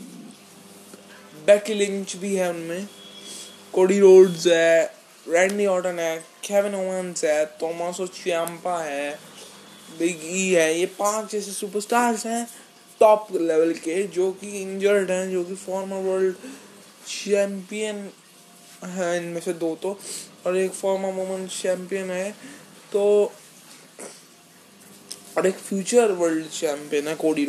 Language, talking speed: Hindi, 120 wpm